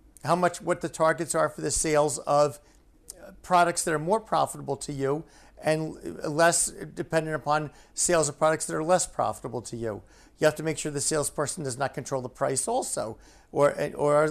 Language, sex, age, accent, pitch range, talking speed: English, male, 50-69, American, 140-175 Hz, 190 wpm